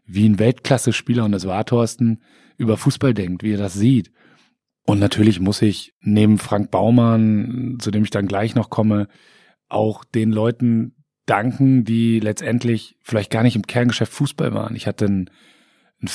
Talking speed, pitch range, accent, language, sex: 165 wpm, 100-115 Hz, German, German, male